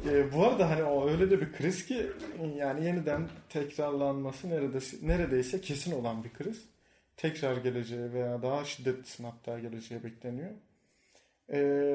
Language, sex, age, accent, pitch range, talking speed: Turkish, male, 30-49, native, 130-175 Hz, 140 wpm